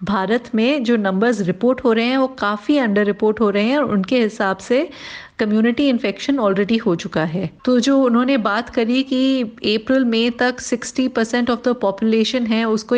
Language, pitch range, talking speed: Hindi, 210-255 Hz, 190 wpm